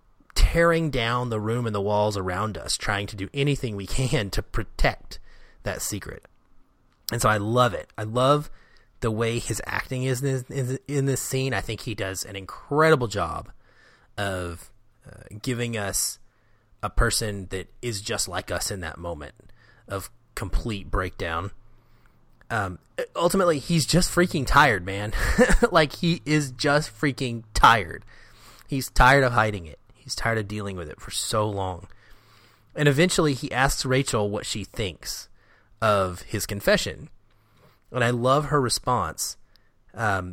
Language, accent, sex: English, American, male